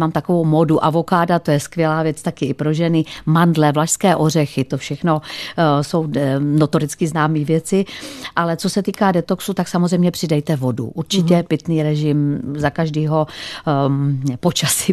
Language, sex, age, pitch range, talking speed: Czech, female, 40-59, 150-170 Hz, 145 wpm